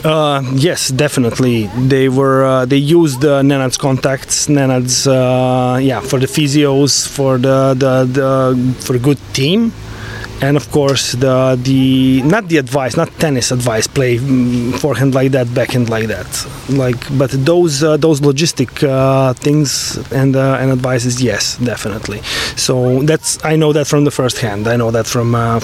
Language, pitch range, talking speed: Dutch, 125-145 Hz, 165 wpm